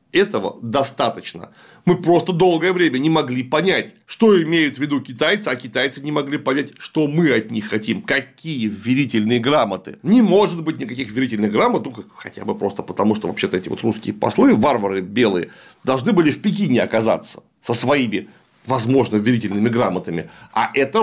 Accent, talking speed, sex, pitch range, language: native, 165 wpm, male, 130-185 Hz, Russian